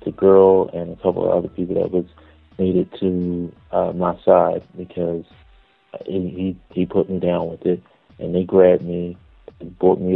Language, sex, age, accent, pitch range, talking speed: English, male, 30-49, American, 90-95 Hz, 185 wpm